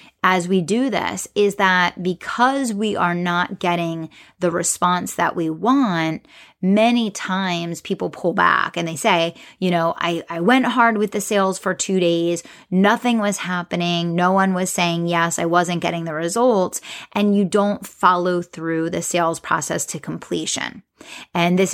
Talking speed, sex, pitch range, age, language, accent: 170 wpm, female, 170-195 Hz, 30-49, English, American